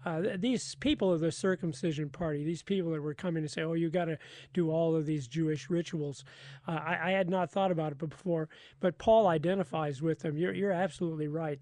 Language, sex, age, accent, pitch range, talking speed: English, male, 40-59, American, 160-195 Hz, 205 wpm